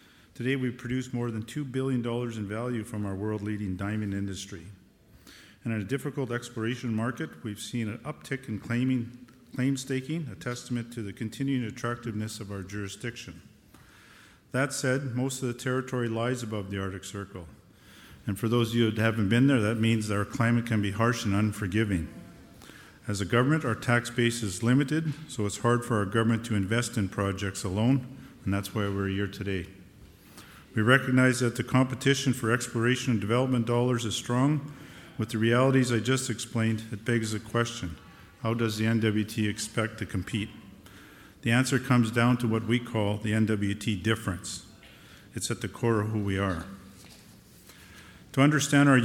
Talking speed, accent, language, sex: 175 wpm, American, English, male